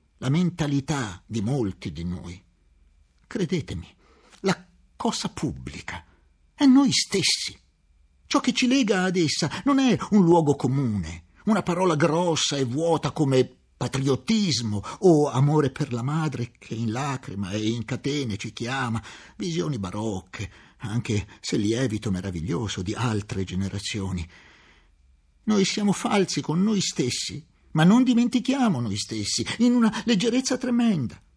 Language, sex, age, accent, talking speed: Italian, male, 50-69, native, 130 wpm